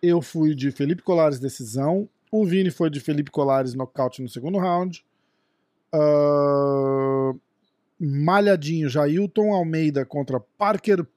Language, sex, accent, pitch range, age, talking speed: Portuguese, male, Brazilian, 145-195 Hz, 40-59, 120 wpm